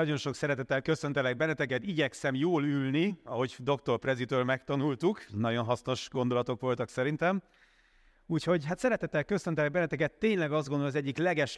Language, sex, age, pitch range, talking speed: Hungarian, male, 30-49, 125-145 Hz, 145 wpm